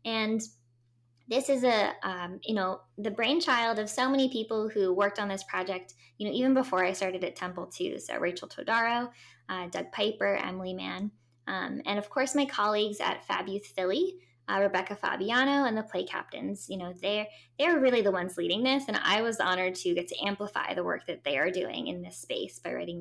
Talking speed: 210 wpm